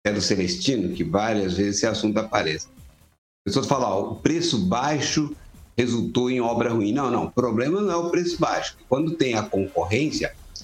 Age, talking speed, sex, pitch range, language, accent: 60-79, 180 wpm, male, 105-175 Hz, Portuguese, Brazilian